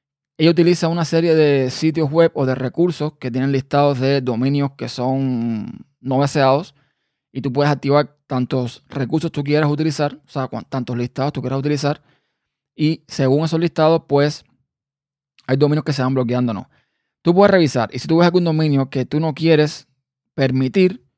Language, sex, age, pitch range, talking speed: Spanish, male, 20-39, 130-160 Hz, 175 wpm